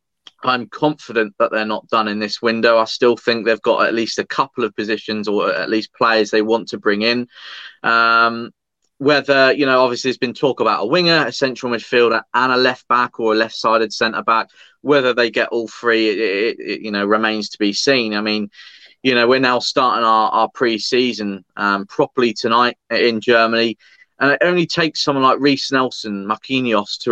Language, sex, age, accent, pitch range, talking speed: English, male, 20-39, British, 110-130 Hz, 205 wpm